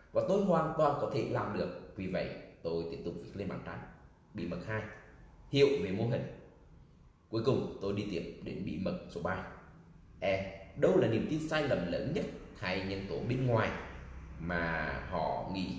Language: Vietnamese